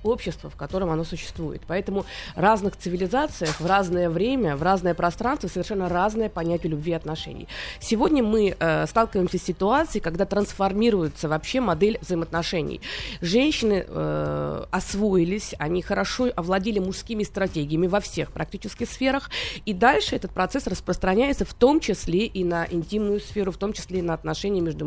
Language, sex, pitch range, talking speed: Russian, female, 175-240 Hz, 150 wpm